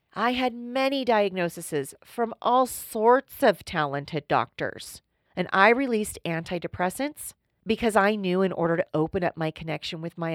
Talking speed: 150 wpm